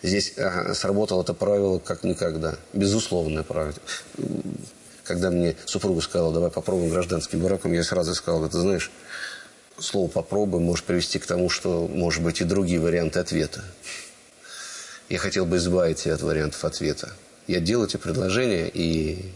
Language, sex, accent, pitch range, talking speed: Russian, male, native, 80-90 Hz, 145 wpm